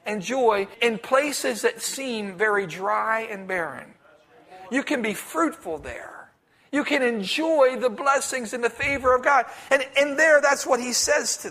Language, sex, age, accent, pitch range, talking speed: English, male, 40-59, American, 215-265 Hz, 170 wpm